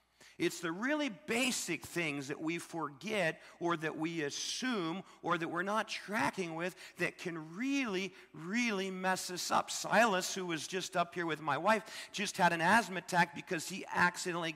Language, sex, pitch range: English, male, 160-210 Hz